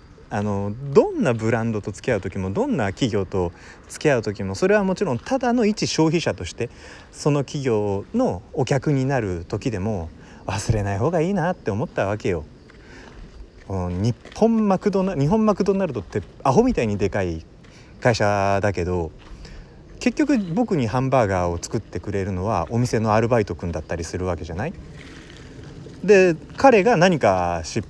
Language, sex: Japanese, male